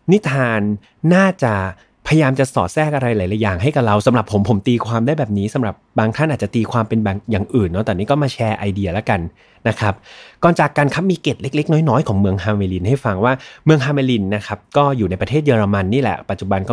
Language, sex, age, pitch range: Thai, male, 20-39, 105-140 Hz